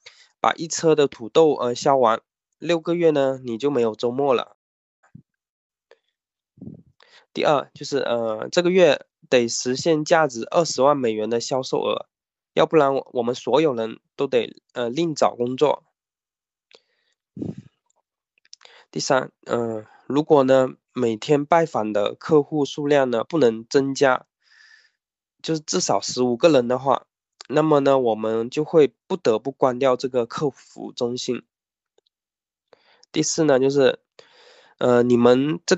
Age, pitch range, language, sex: 20-39, 120-160 Hz, Chinese, male